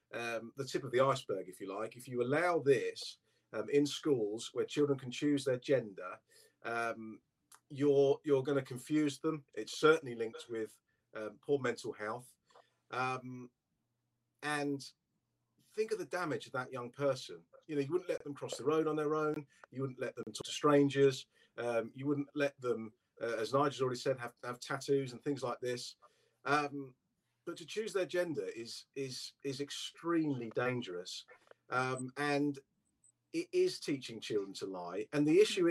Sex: male